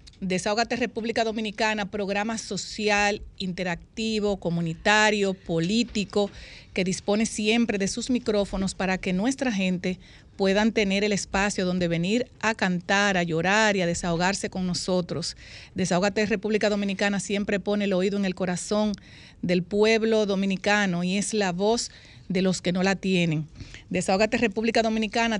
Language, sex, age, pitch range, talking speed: Spanish, female, 40-59, 190-220 Hz, 140 wpm